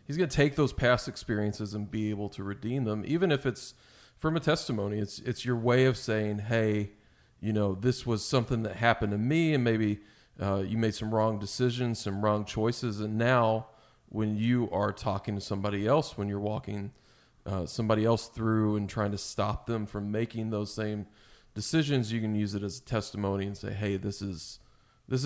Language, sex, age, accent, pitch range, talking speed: English, male, 40-59, American, 105-120 Hz, 200 wpm